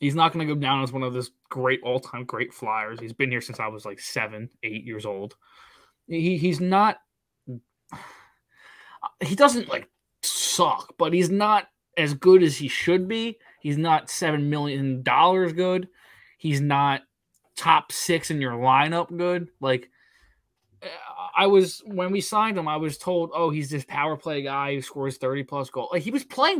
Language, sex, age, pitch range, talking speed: English, male, 20-39, 135-185 Hz, 180 wpm